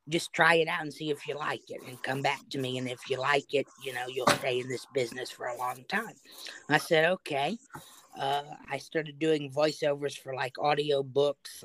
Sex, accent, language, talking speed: female, American, English, 220 wpm